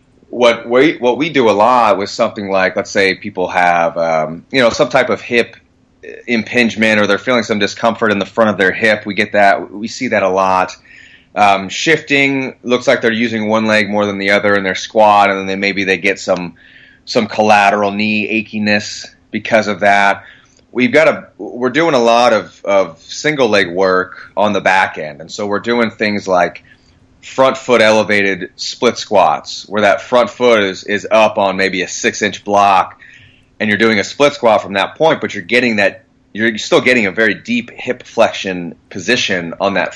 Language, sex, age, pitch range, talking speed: English, male, 30-49, 95-115 Hz, 200 wpm